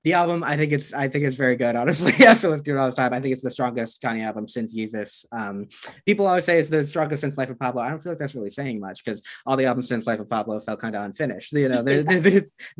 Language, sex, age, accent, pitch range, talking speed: English, male, 20-39, American, 115-150 Hz, 295 wpm